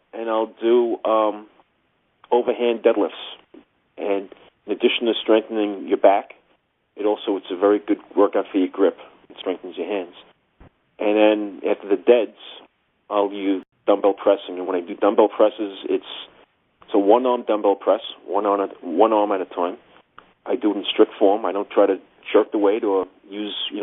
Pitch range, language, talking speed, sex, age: 100-125 Hz, English, 185 wpm, male, 40-59